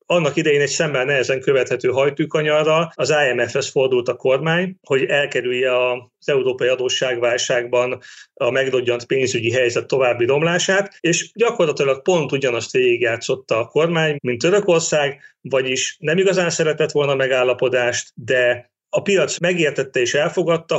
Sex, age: male, 30-49